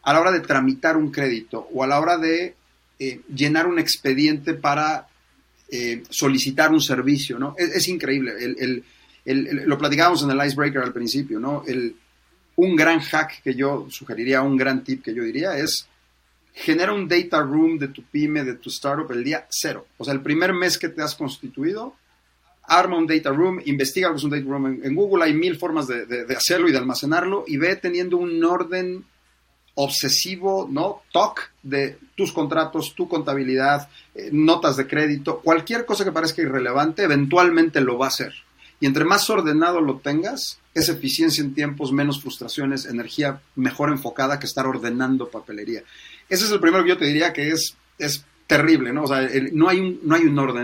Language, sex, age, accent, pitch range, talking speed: Spanish, male, 40-59, Mexican, 135-165 Hz, 185 wpm